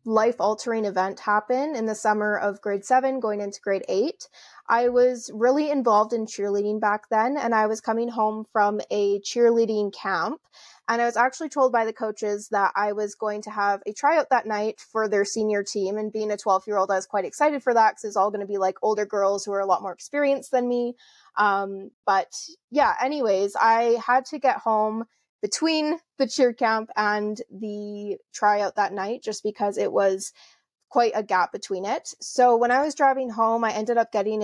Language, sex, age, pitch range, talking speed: English, female, 20-39, 205-240 Hz, 205 wpm